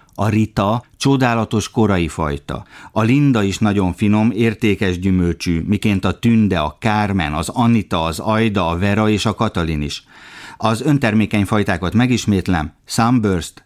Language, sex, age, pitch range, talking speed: Hungarian, male, 50-69, 95-115 Hz, 140 wpm